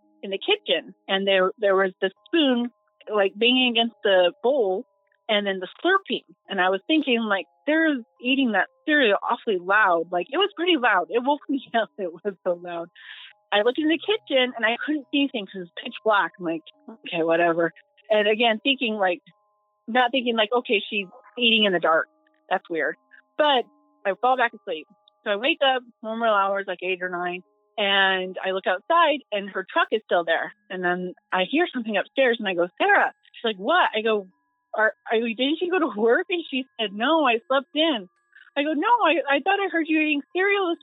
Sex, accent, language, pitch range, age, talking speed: female, American, English, 195-280 Hz, 30-49, 210 wpm